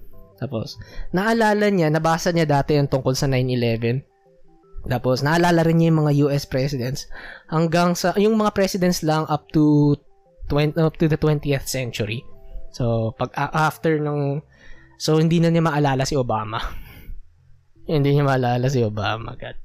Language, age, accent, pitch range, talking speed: Filipino, 20-39, native, 125-165 Hz, 150 wpm